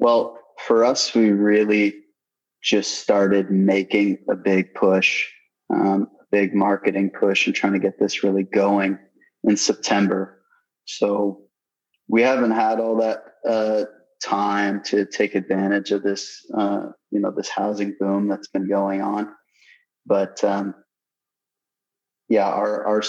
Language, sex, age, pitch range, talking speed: English, male, 20-39, 100-105 Hz, 140 wpm